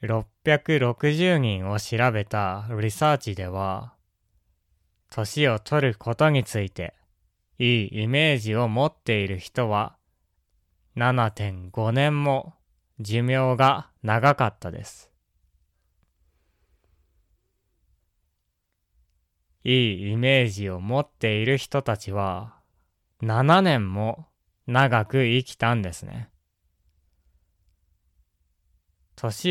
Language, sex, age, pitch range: Japanese, male, 20-39, 90-130 Hz